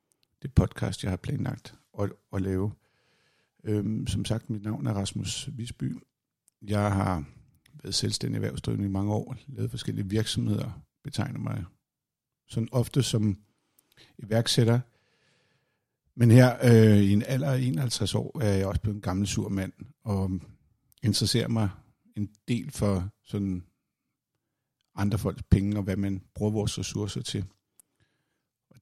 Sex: male